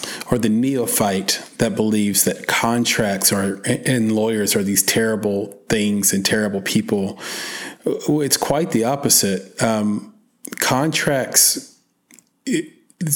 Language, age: English, 40-59